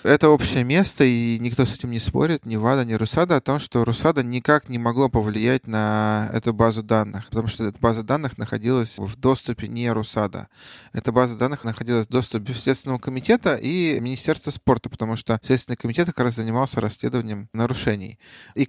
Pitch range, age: 110-130 Hz, 20-39